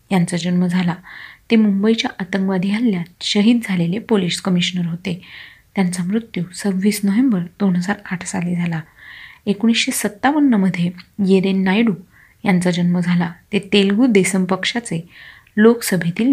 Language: Marathi